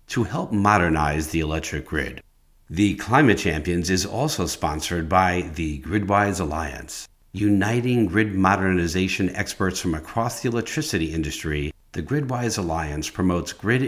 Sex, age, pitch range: male, 50-69, 80-110 Hz